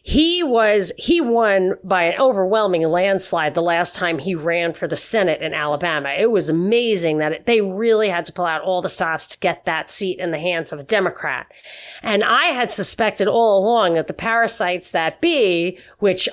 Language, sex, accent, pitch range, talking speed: English, female, American, 180-230 Hz, 195 wpm